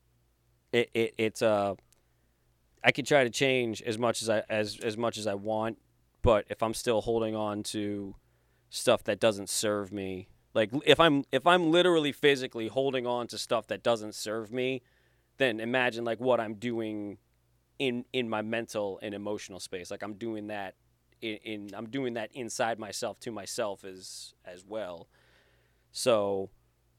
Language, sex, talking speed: English, male, 170 wpm